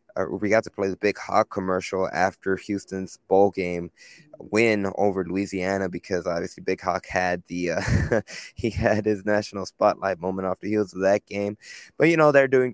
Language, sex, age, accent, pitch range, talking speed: English, male, 20-39, American, 100-115 Hz, 190 wpm